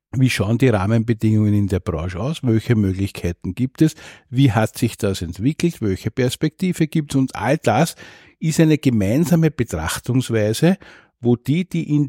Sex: male